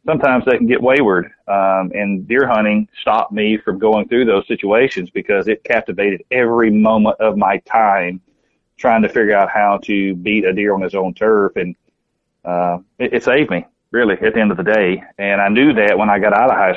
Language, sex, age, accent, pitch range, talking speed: English, male, 40-59, American, 95-110 Hz, 215 wpm